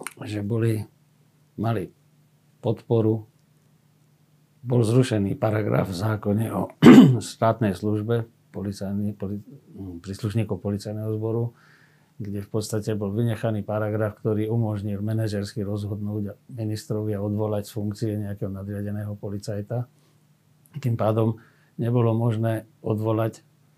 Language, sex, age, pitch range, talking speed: Slovak, male, 50-69, 105-120 Hz, 100 wpm